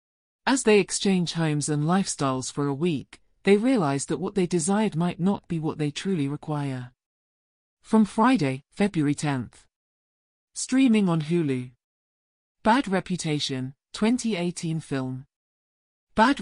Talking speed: 125 wpm